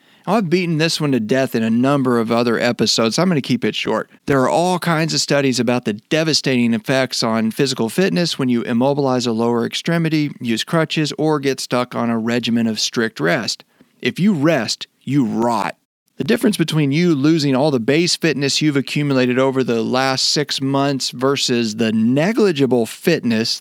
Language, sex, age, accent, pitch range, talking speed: English, male, 40-59, American, 120-165 Hz, 185 wpm